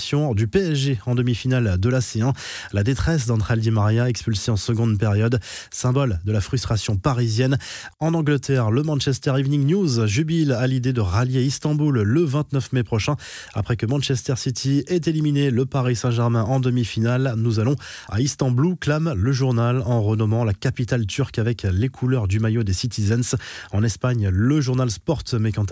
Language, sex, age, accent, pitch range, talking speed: French, male, 20-39, French, 110-140 Hz, 175 wpm